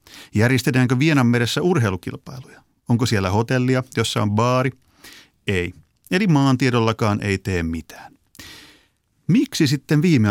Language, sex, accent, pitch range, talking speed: Finnish, male, native, 105-140 Hz, 105 wpm